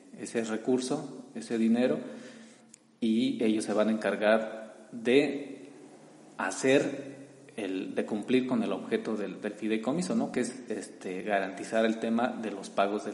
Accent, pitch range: Mexican, 105-130 Hz